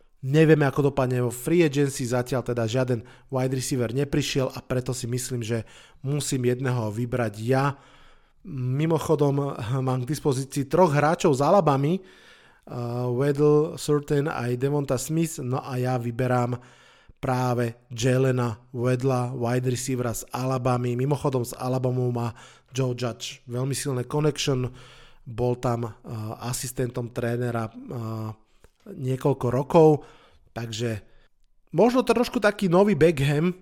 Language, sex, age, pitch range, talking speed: Slovak, male, 20-39, 120-140 Hz, 125 wpm